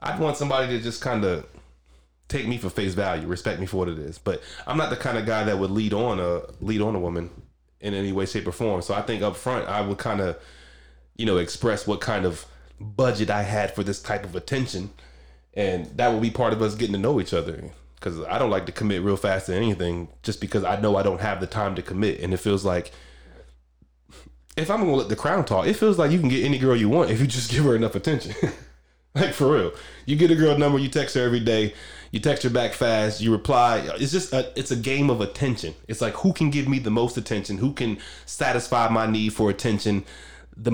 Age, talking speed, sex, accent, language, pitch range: 20-39, 250 wpm, male, American, English, 95-120 Hz